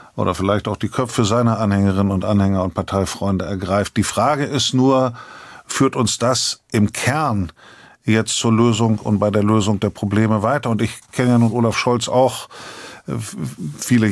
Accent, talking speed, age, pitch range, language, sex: German, 170 wpm, 50-69, 105-120 Hz, German, male